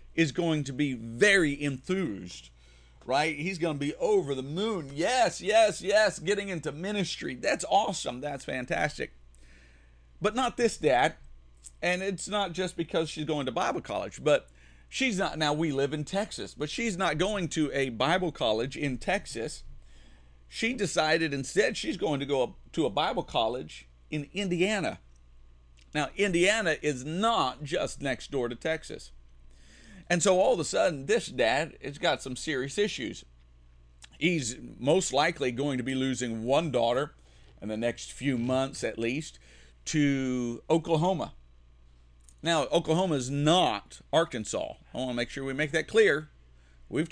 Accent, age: American, 50-69